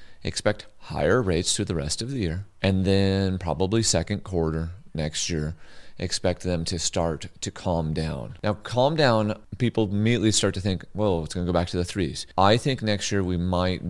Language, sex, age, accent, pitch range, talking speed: English, male, 30-49, American, 80-100 Hz, 200 wpm